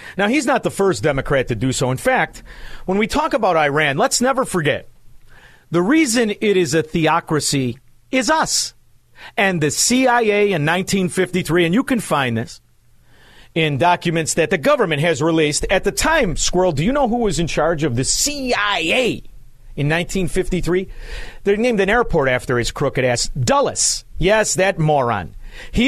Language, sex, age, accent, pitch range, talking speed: English, male, 50-69, American, 140-205 Hz, 170 wpm